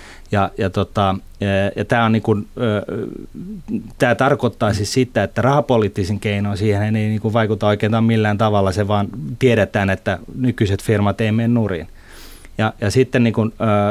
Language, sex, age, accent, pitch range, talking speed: Finnish, male, 30-49, native, 100-115 Hz, 145 wpm